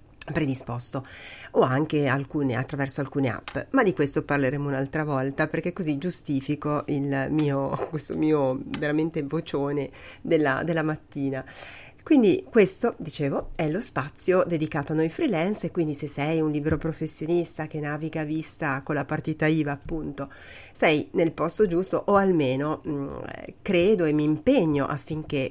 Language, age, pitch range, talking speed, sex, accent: Italian, 40-59, 140-170 Hz, 150 wpm, female, native